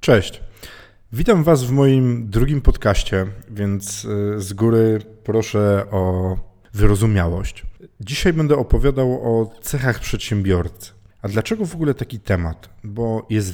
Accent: native